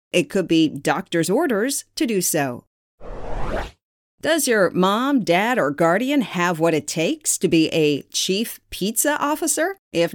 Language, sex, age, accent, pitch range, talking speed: English, female, 40-59, American, 160-245 Hz, 150 wpm